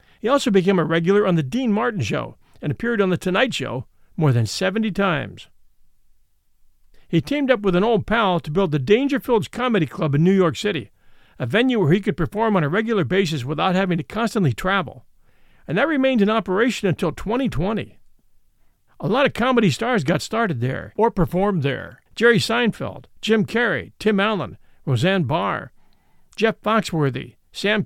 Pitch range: 145-225 Hz